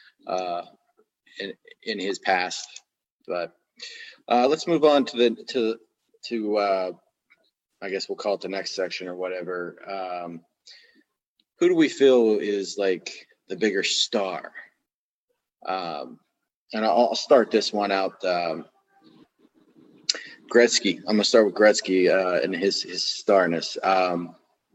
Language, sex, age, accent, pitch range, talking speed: English, male, 30-49, American, 95-155 Hz, 135 wpm